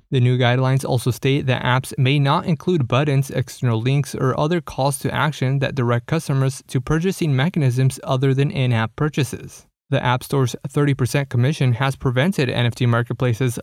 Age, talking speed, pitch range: 20-39, 165 wpm, 125-145 Hz